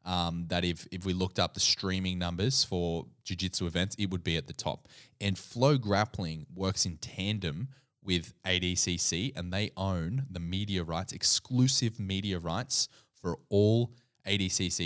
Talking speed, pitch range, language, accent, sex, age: 160 wpm, 90-110 Hz, English, Australian, male, 20-39